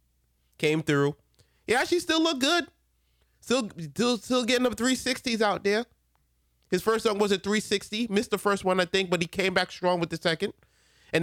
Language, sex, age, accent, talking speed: English, male, 30-49, American, 190 wpm